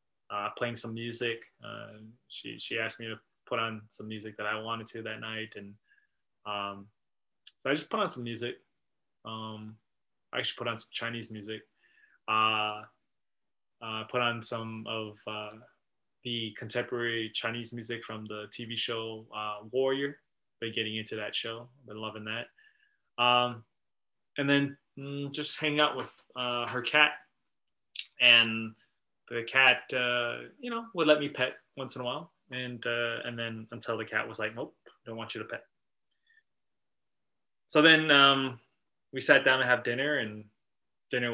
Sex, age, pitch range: male, 20-39, 110-125 Hz